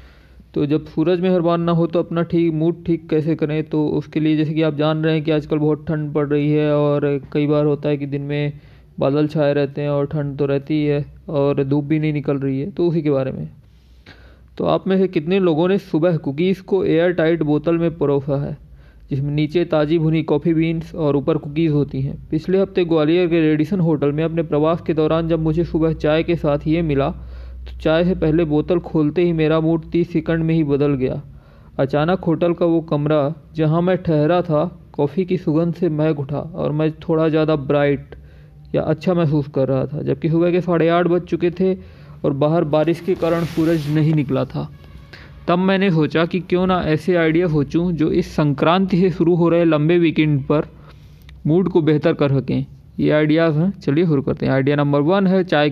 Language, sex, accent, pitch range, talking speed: Hindi, male, native, 145-170 Hz, 215 wpm